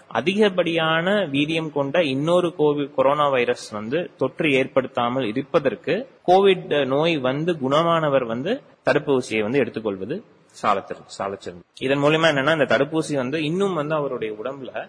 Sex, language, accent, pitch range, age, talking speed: male, Tamil, native, 115-150 Hz, 30-49, 125 wpm